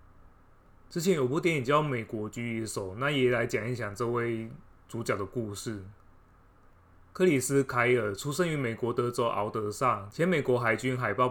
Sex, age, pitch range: male, 20-39, 100-135 Hz